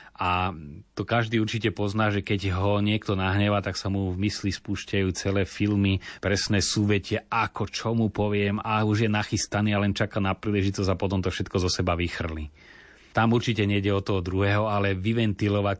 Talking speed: 180 wpm